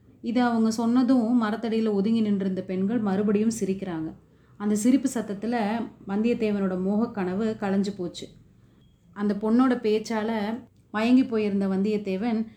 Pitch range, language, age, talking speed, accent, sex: 185-220 Hz, Tamil, 30-49, 115 wpm, native, female